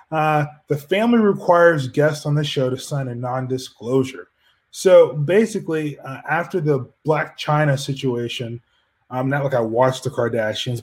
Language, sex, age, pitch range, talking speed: English, male, 20-39, 130-150 Hz, 150 wpm